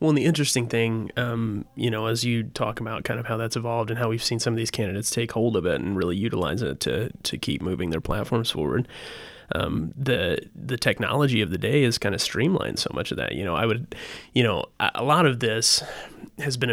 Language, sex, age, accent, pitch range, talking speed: English, male, 30-49, American, 105-120 Hz, 240 wpm